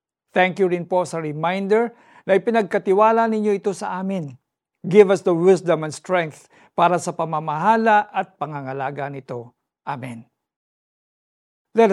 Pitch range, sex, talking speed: 150-195 Hz, male, 130 wpm